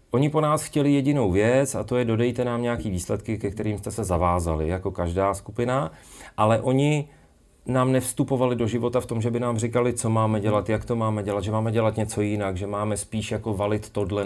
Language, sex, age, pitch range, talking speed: Czech, male, 40-59, 100-110 Hz, 215 wpm